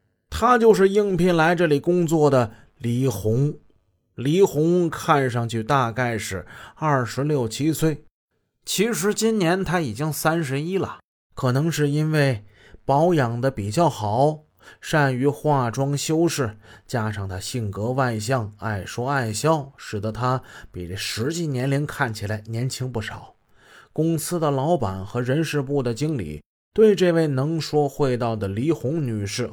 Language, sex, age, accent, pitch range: Chinese, male, 20-39, native, 110-160 Hz